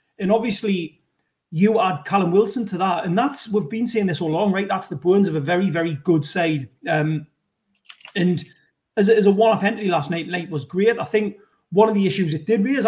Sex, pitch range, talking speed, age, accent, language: male, 175-220 Hz, 225 wpm, 30-49, British, English